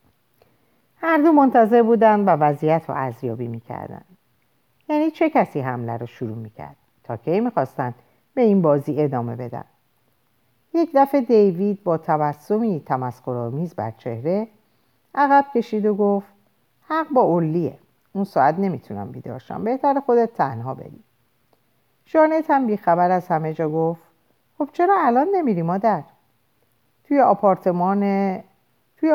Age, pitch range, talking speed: 50-69, 135-220 Hz, 125 wpm